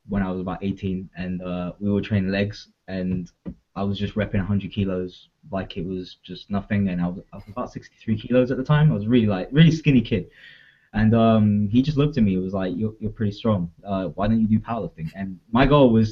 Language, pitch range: English, 90-110 Hz